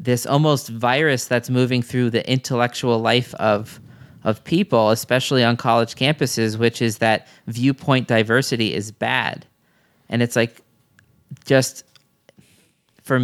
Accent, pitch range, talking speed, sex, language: American, 115-130 Hz, 125 wpm, male, English